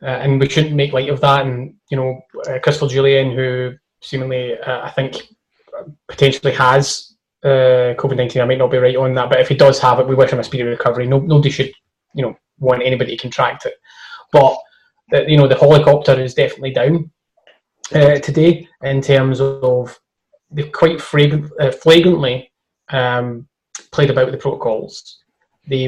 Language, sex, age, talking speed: English, male, 20-39, 180 wpm